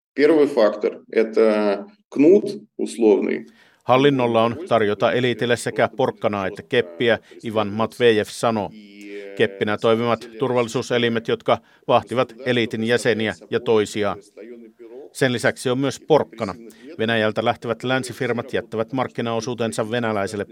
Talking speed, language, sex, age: 90 wpm, Finnish, male, 50-69